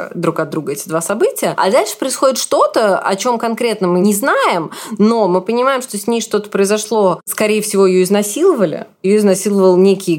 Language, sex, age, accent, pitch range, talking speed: Russian, female, 20-39, native, 175-220 Hz, 185 wpm